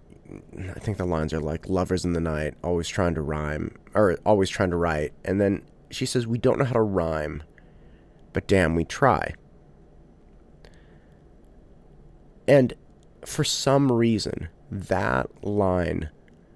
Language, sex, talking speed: English, male, 140 wpm